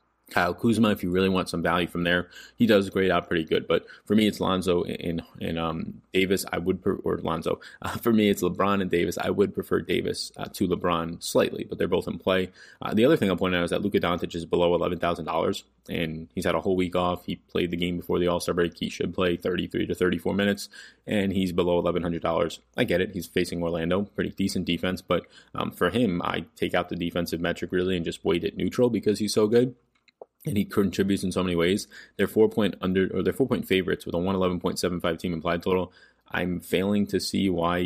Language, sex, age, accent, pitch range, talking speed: English, male, 20-39, American, 85-95 Hz, 235 wpm